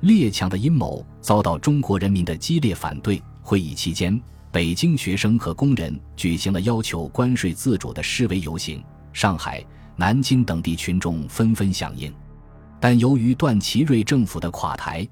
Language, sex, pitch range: Chinese, male, 85-120 Hz